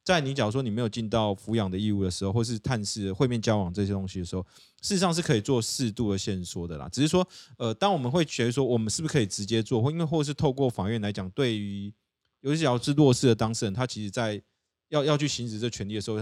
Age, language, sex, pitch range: 20-39, Chinese, male, 100-135 Hz